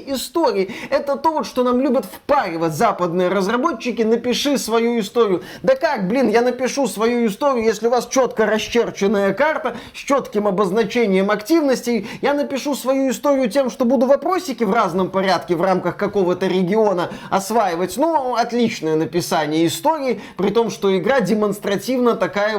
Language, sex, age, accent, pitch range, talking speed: Russian, male, 20-39, native, 185-240 Hz, 145 wpm